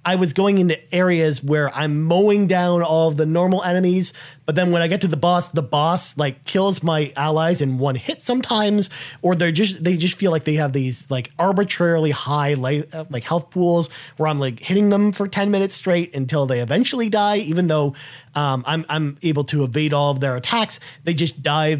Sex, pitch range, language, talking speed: male, 145-180 Hz, English, 215 wpm